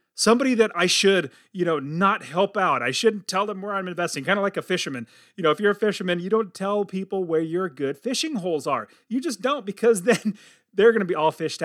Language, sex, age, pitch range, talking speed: English, male, 30-49, 170-225 Hz, 240 wpm